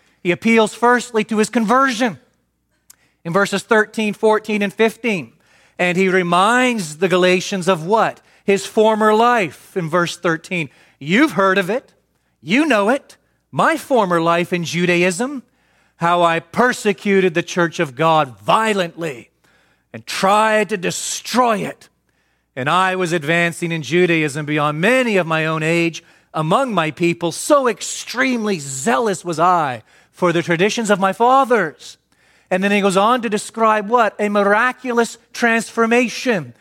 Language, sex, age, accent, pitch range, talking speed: English, male, 40-59, American, 175-235 Hz, 145 wpm